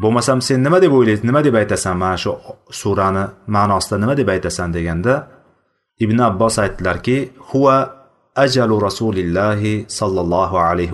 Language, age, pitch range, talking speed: Russian, 30-49, 95-120 Hz, 120 wpm